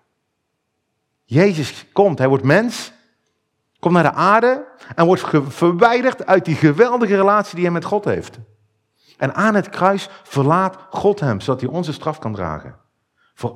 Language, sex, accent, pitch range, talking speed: Dutch, male, Dutch, 110-175 Hz, 155 wpm